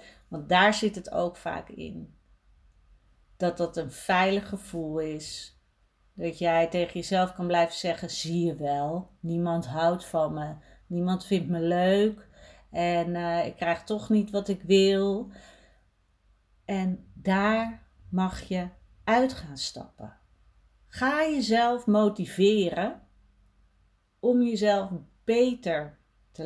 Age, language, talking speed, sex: 40-59, Dutch, 120 wpm, female